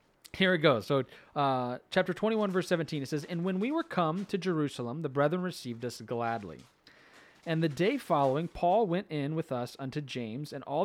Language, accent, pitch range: English, American, 135-185 Hz